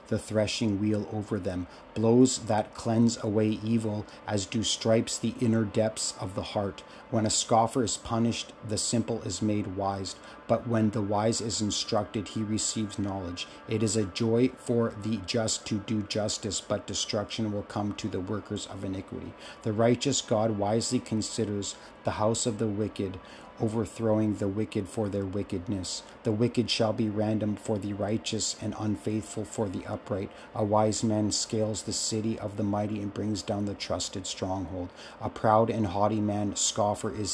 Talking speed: 175 wpm